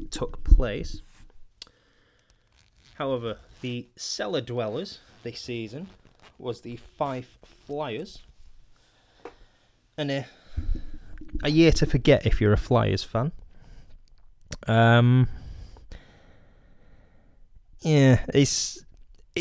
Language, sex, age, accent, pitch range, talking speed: English, male, 20-39, British, 100-125 Hz, 75 wpm